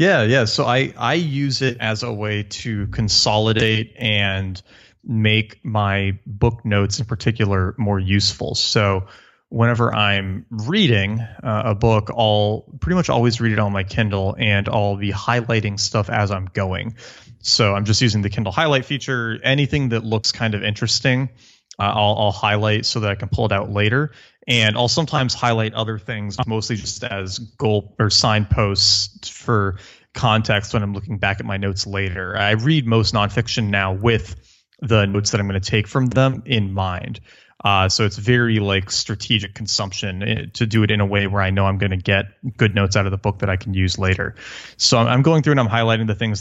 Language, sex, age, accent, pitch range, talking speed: English, male, 30-49, American, 100-115 Hz, 195 wpm